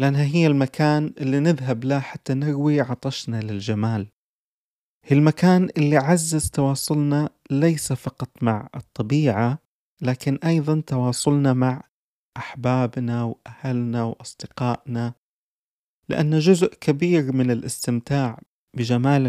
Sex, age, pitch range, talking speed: male, 30-49, 120-145 Hz, 100 wpm